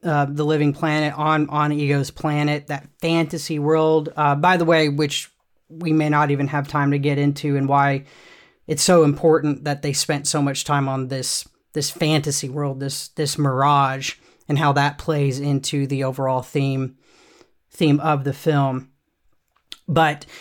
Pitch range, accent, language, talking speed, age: 140-155 Hz, American, English, 170 wpm, 30-49